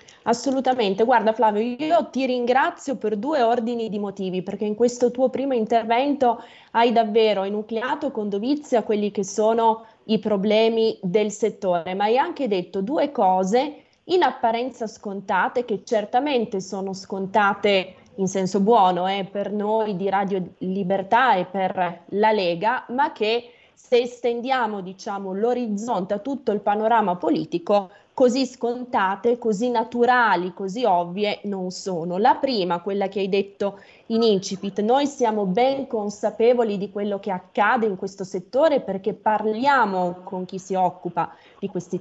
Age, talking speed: 20-39, 145 wpm